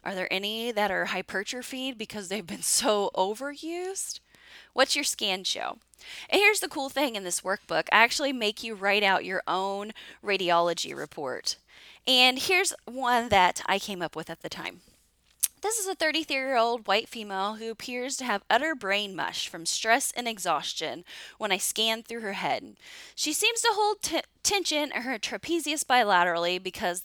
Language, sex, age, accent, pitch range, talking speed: English, female, 20-39, American, 190-285 Hz, 170 wpm